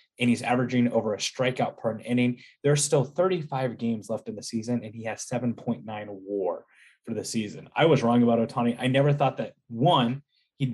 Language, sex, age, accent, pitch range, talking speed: English, male, 20-39, American, 110-135 Hz, 200 wpm